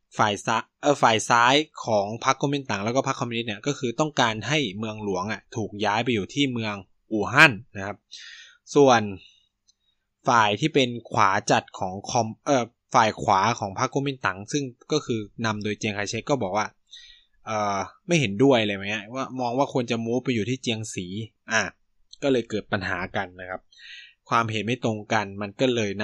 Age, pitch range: 20-39, 100-130 Hz